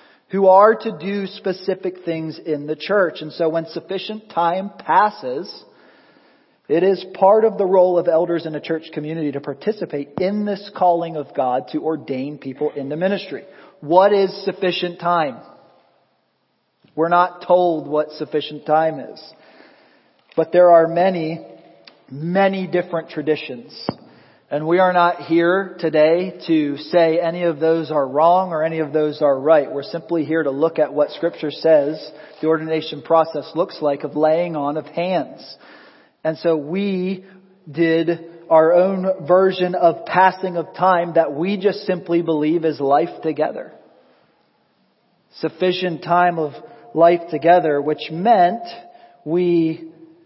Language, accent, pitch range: English, American, 155-185 Hz